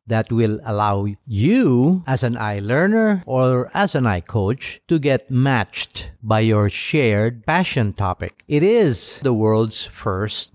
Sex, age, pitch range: male, 50-69, 110-150 Hz